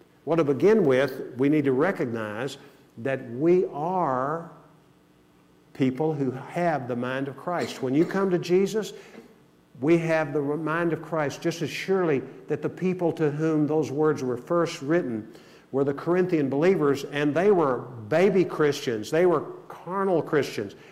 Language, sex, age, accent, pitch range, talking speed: English, male, 50-69, American, 115-155 Hz, 160 wpm